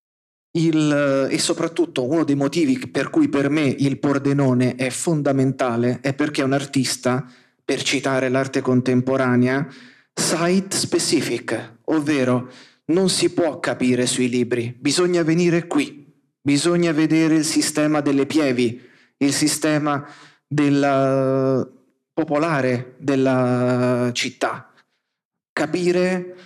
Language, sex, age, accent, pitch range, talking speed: Italian, male, 30-49, native, 125-150 Hz, 105 wpm